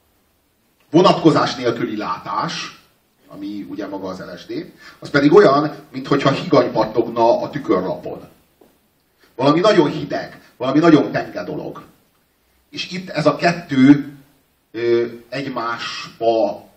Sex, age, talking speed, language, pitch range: male, 40-59, 105 wpm, Hungarian, 140-175 Hz